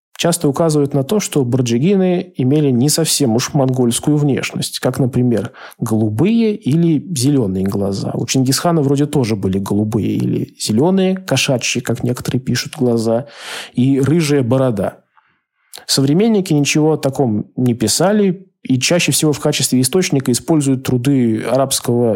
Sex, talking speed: male, 135 wpm